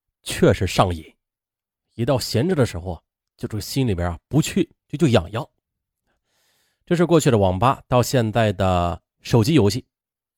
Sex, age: male, 30-49